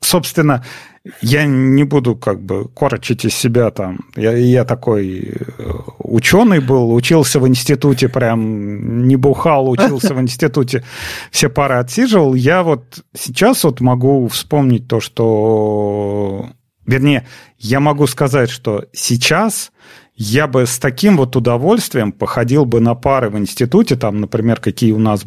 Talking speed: 140 wpm